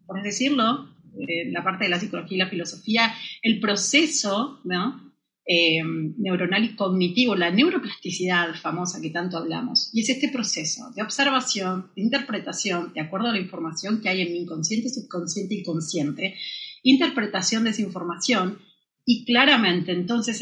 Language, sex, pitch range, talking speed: Spanish, female, 185-255 Hz, 155 wpm